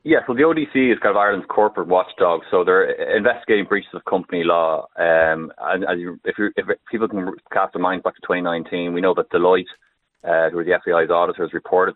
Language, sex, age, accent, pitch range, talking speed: English, male, 20-39, Irish, 85-115 Hz, 210 wpm